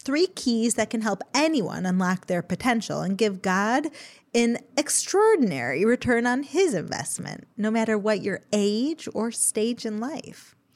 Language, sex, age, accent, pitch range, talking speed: English, female, 30-49, American, 220-300 Hz, 150 wpm